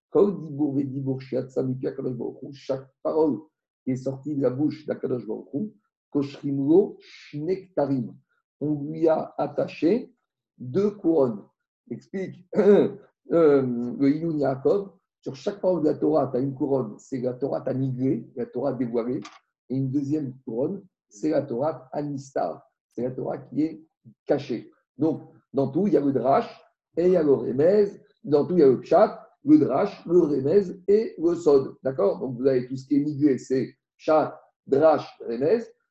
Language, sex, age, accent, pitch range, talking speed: French, male, 50-69, French, 135-185 Hz, 155 wpm